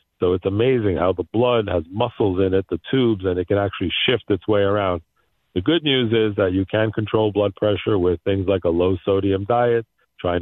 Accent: American